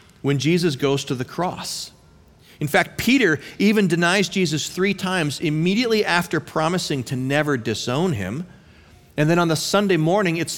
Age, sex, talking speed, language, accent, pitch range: 40-59, male, 160 wpm, English, American, 115-175 Hz